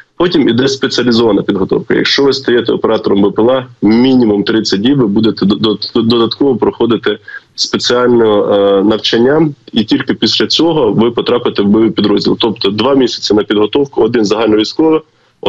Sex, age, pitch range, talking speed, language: male, 20-39, 100-125 Hz, 130 wpm, Ukrainian